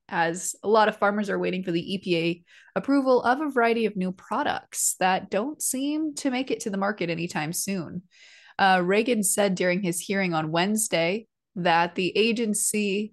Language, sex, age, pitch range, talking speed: English, female, 20-39, 175-235 Hz, 180 wpm